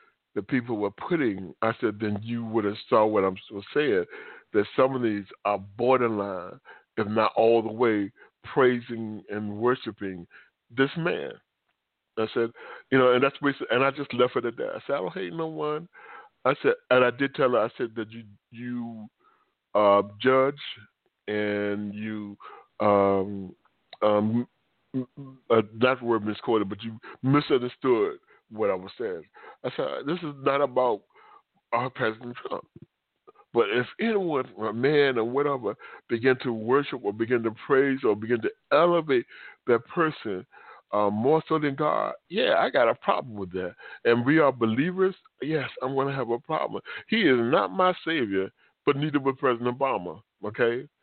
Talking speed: 170 wpm